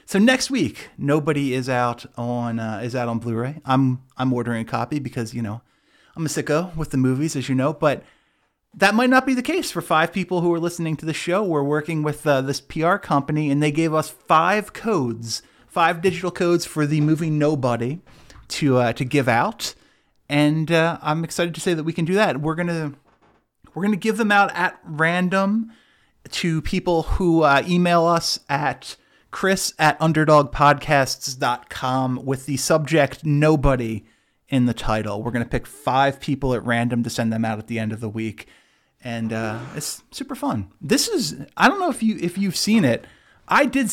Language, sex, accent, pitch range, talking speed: English, male, American, 125-170 Hz, 200 wpm